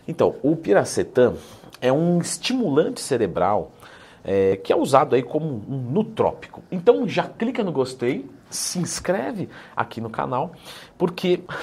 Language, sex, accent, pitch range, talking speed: Portuguese, male, Brazilian, 120-175 Hz, 135 wpm